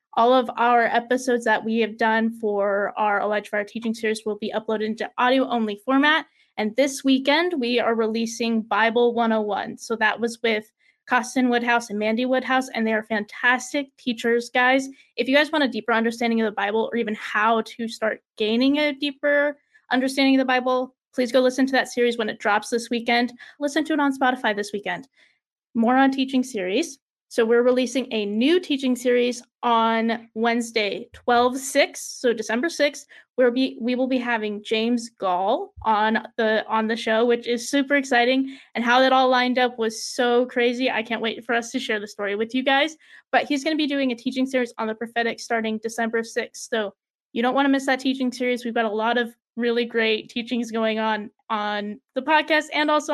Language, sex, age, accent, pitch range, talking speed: English, female, 20-39, American, 225-260 Hz, 200 wpm